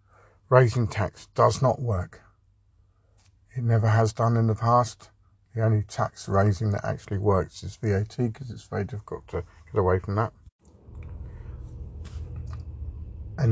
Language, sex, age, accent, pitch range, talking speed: English, male, 50-69, British, 90-115 Hz, 140 wpm